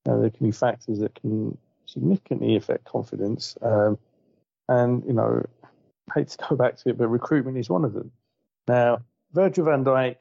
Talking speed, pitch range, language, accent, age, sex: 180 wpm, 110-125 Hz, English, British, 40-59, male